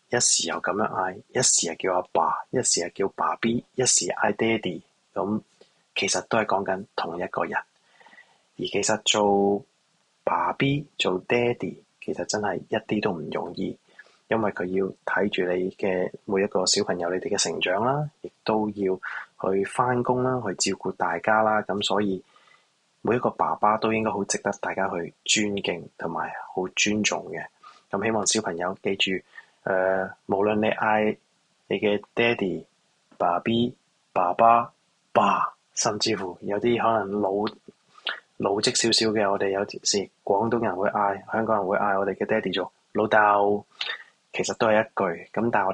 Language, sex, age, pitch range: Chinese, male, 20-39, 95-110 Hz